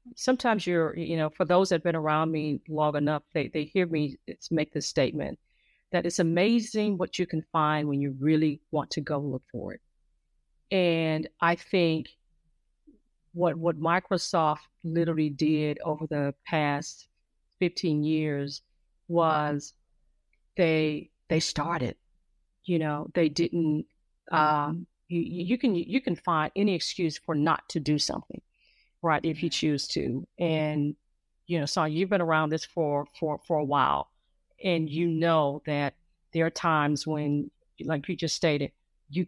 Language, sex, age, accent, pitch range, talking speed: English, female, 40-59, American, 150-175 Hz, 155 wpm